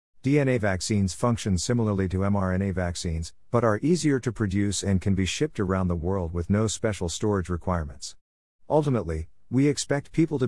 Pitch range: 90-120 Hz